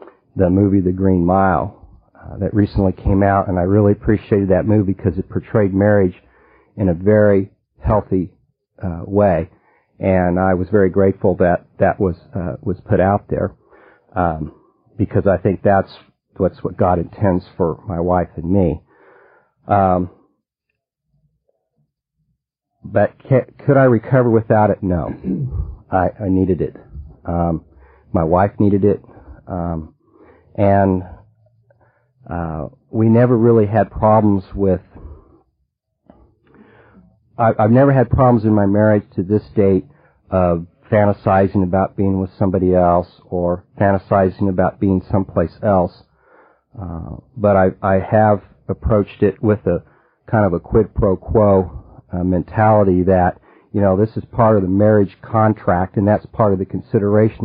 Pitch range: 90-105 Hz